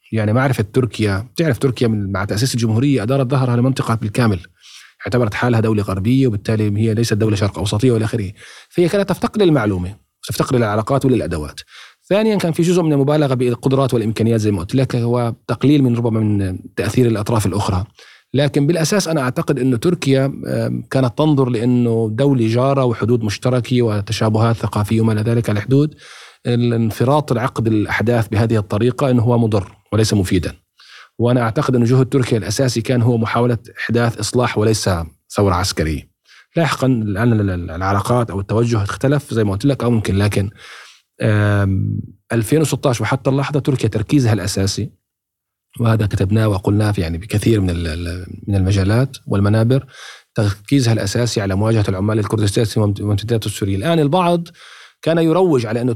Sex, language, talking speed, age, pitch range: male, Arabic, 145 wpm, 40-59, 105-130 Hz